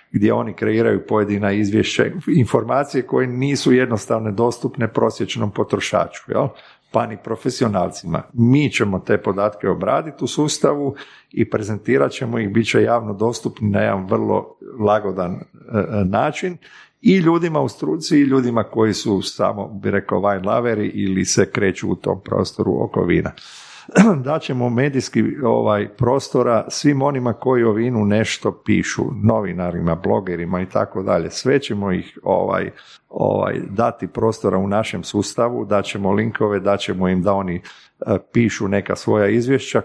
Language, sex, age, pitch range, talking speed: Croatian, male, 50-69, 100-125 Hz, 140 wpm